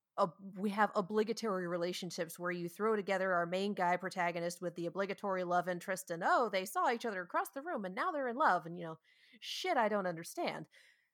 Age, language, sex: 30-49, English, female